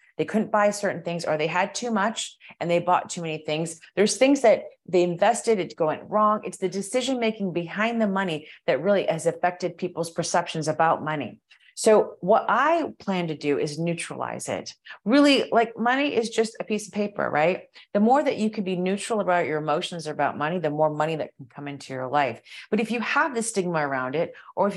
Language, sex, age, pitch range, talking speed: English, female, 30-49, 165-220 Hz, 215 wpm